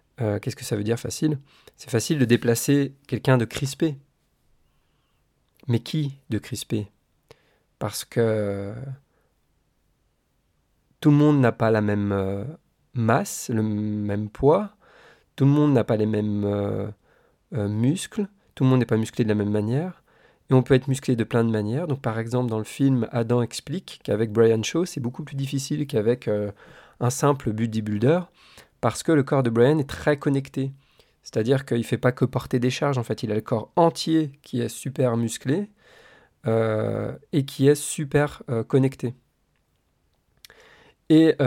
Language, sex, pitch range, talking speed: French, male, 110-145 Hz, 170 wpm